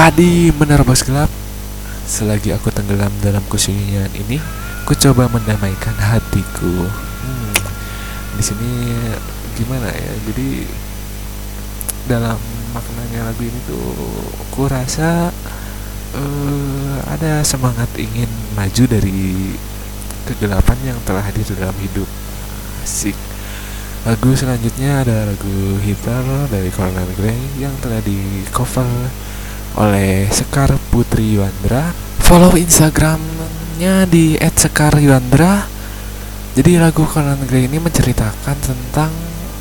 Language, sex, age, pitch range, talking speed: Indonesian, male, 20-39, 100-135 Hz, 105 wpm